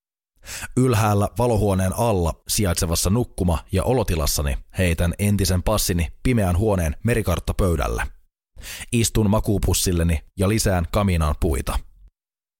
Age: 30-49